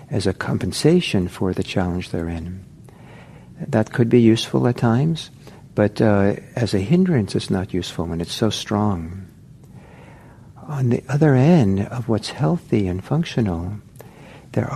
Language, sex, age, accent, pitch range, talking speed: English, male, 60-79, American, 95-130 Hz, 145 wpm